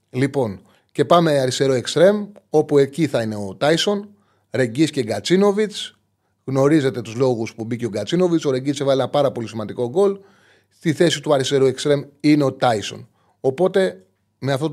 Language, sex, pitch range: Greek, male, 115-160 Hz